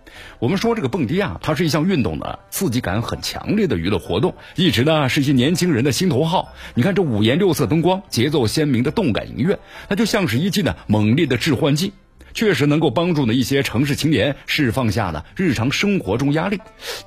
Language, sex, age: Chinese, male, 50-69